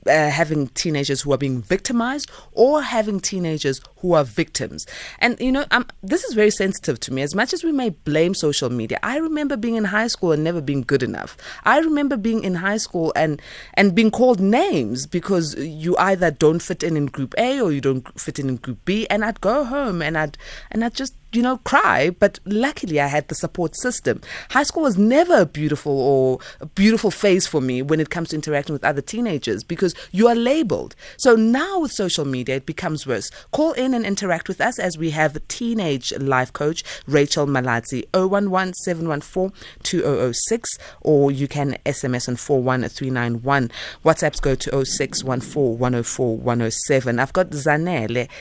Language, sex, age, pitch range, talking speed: English, female, 20-39, 140-215 Hz, 185 wpm